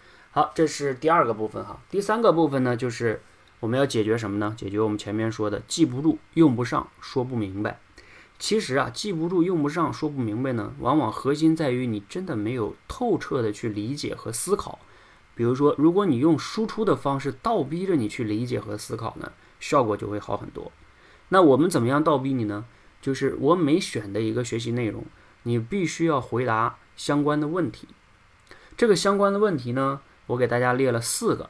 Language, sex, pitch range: Chinese, male, 110-150 Hz